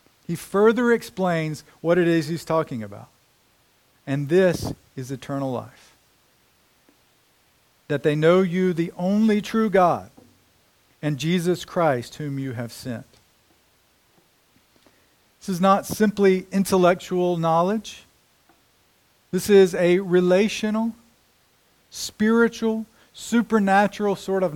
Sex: male